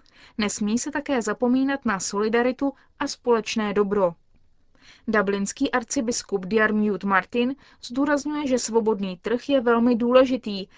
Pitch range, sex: 200-255 Hz, female